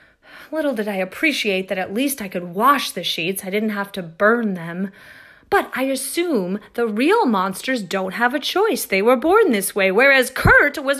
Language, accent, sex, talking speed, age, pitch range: English, American, female, 195 wpm, 30-49, 205-320 Hz